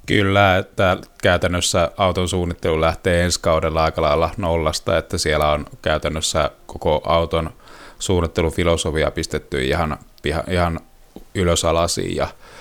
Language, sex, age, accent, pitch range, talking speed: Finnish, male, 30-49, native, 80-90 Hz, 105 wpm